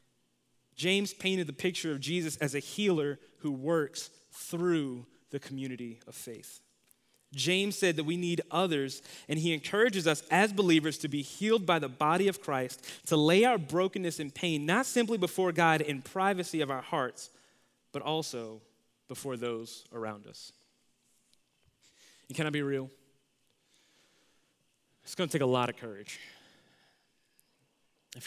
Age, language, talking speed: 20-39, English, 150 wpm